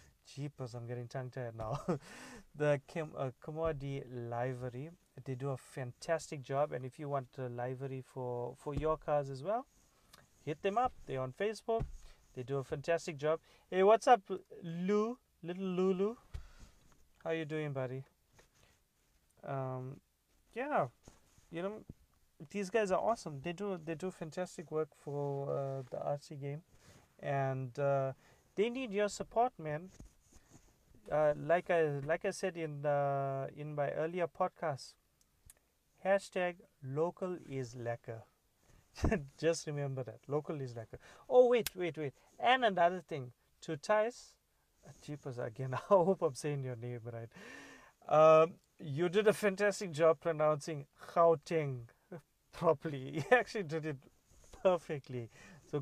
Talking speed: 140 wpm